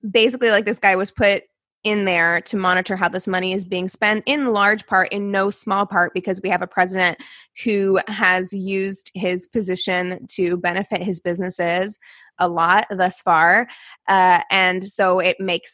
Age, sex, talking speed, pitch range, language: 20-39, female, 175 wpm, 185-225 Hz, English